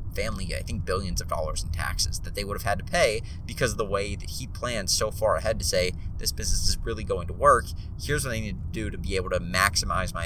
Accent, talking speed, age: American, 270 wpm, 30-49